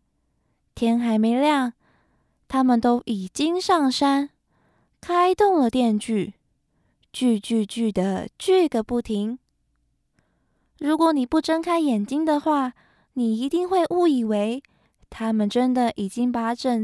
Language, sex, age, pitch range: Chinese, female, 20-39, 225-310 Hz